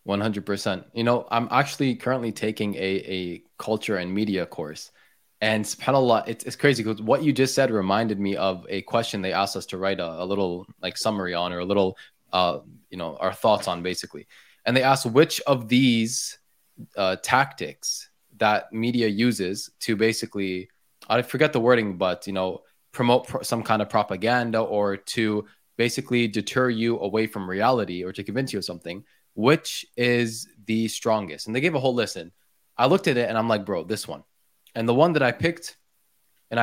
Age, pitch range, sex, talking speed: 20-39, 105-130 Hz, male, 195 wpm